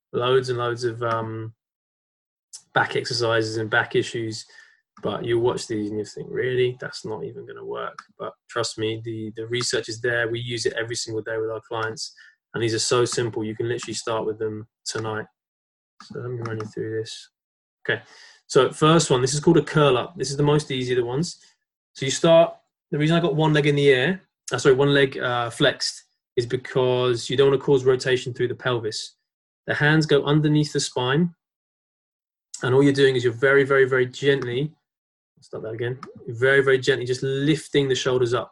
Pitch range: 120-145 Hz